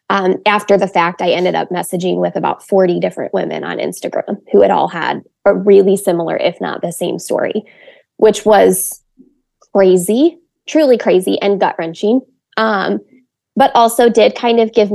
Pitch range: 185-255 Hz